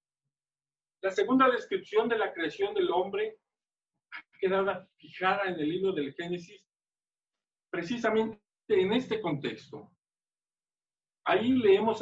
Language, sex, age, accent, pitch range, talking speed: Spanish, male, 50-69, Mexican, 145-210 Hz, 110 wpm